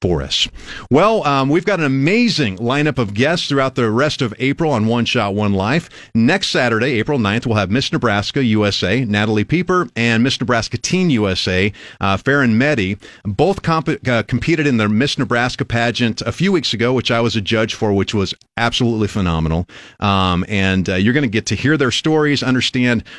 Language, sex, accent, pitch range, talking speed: English, male, American, 110-145 Hz, 190 wpm